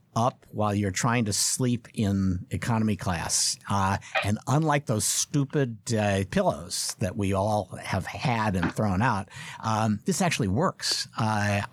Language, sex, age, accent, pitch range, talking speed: English, male, 50-69, American, 105-140 Hz, 150 wpm